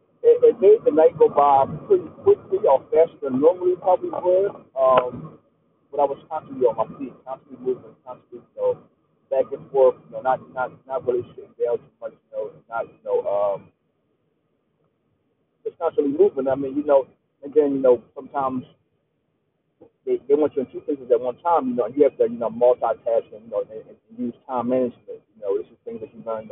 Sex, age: male, 40-59